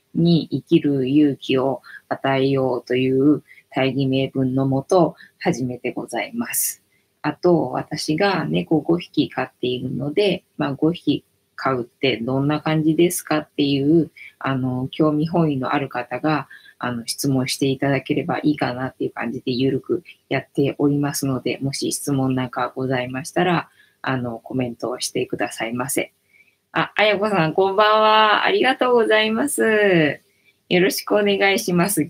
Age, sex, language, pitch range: 20-39, female, Japanese, 130-170 Hz